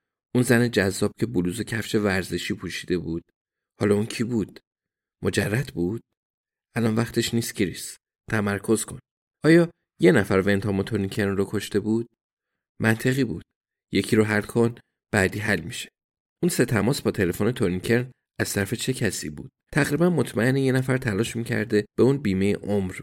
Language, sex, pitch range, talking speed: Persian, male, 100-120 Hz, 155 wpm